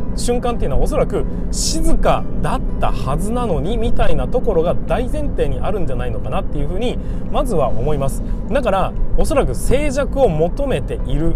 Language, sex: Japanese, male